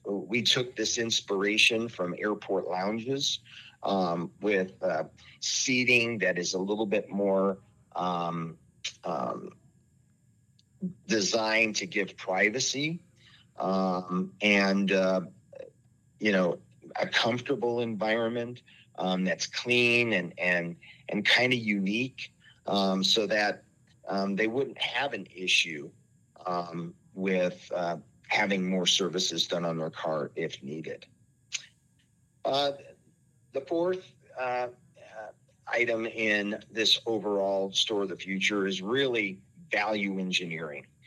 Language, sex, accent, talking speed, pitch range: English, male, American, 115 wpm, 95-125 Hz